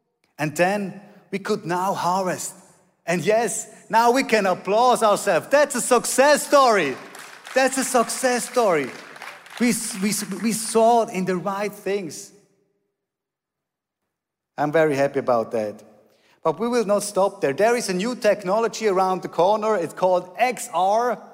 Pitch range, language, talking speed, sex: 170-220 Hz, English, 145 wpm, male